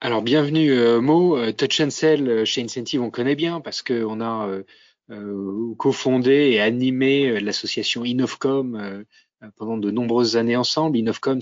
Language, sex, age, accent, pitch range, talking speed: French, male, 30-49, French, 110-140 Hz, 135 wpm